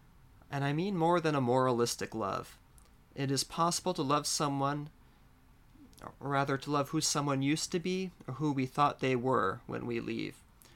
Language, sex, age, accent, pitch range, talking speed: English, male, 30-49, American, 120-150 Hz, 180 wpm